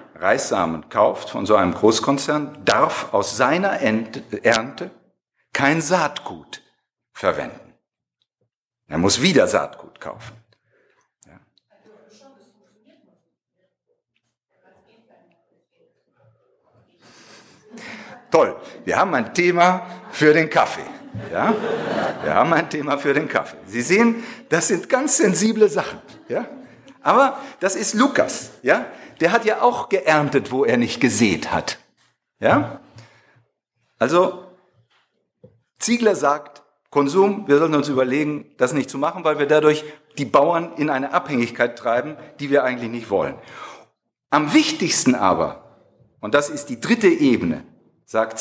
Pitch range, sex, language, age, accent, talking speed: 140-195 Hz, male, German, 50-69, German, 115 wpm